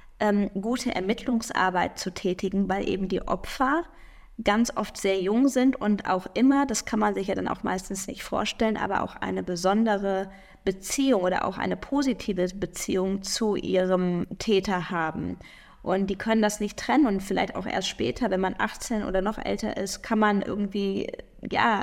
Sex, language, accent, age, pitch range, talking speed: female, German, German, 20-39, 195-230 Hz, 170 wpm